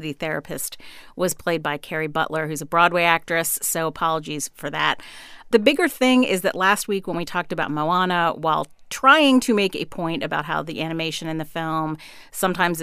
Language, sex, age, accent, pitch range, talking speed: English, female, 40-59, American, 160-185 Hz, 190 wpm